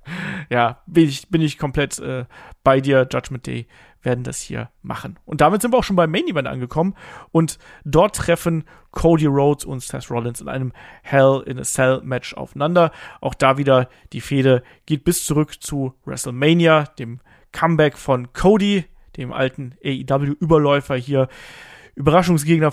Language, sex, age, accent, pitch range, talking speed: German, male, 40-59, German, 135-165 Hz, 160 wpm